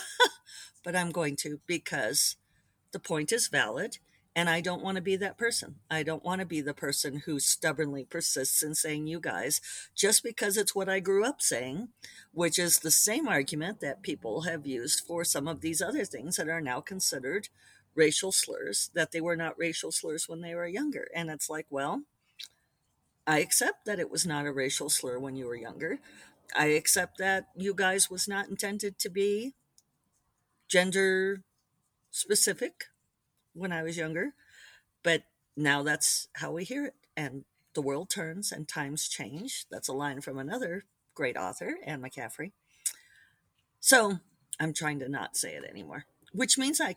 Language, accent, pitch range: English, American, 145-195 Hz